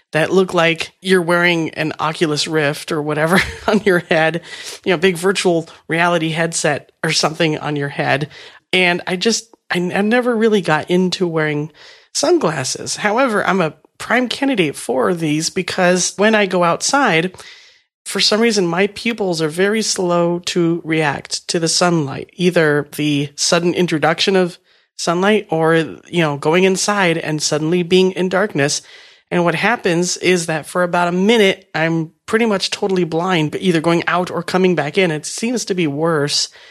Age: 40-59